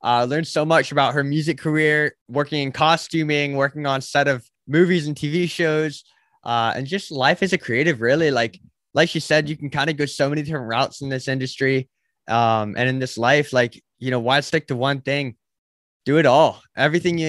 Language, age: English, 20-39